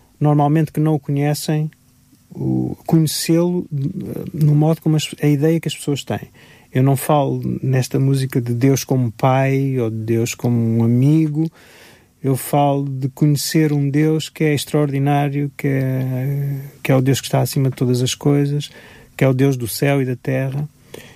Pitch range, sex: 130-150 Hz, male